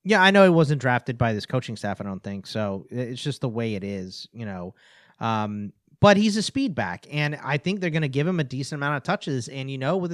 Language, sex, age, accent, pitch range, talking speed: English, male, 30-49, American, 130-185 Hz, 265 wpm